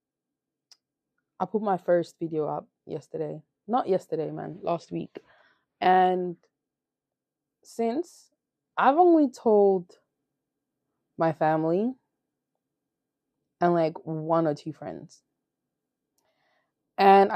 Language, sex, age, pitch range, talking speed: English, female, 20-39, 150-195 Hz, 90 wpm